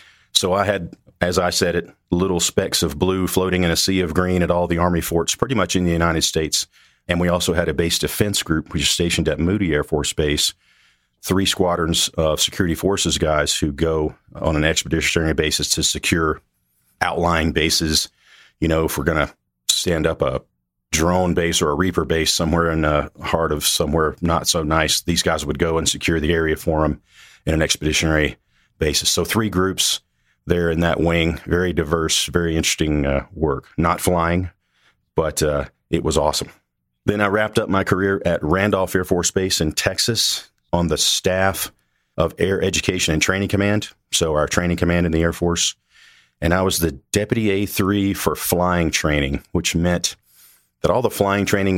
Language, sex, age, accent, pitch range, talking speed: English, male, 40-59, American, 80-90 Hz, 190 wpm